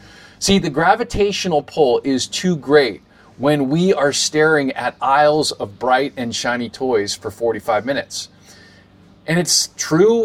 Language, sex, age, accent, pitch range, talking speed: English, male, 30-49, American, 120-170 Hz, 140 wpm